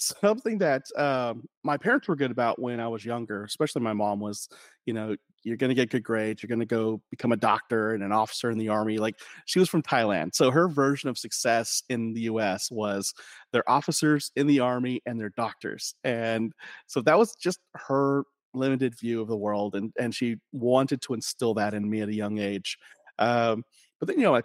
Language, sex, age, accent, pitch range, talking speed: English, male, 30-49, American, 110-130 Hz, 215 wpm